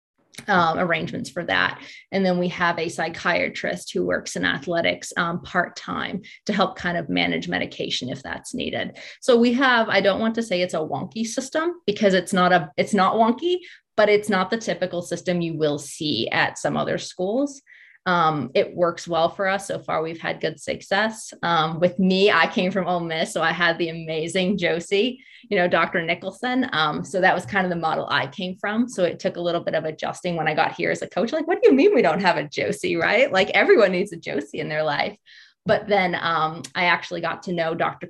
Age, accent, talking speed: 20-39, American, 220 wpm